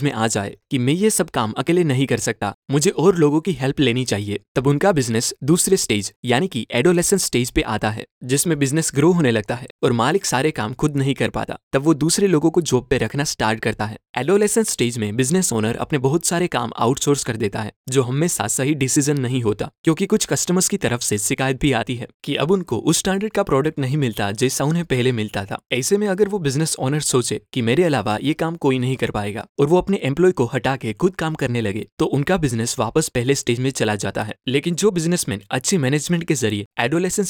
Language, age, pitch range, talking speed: Hindi, 20-39, 120-160 Hz, 200 wpm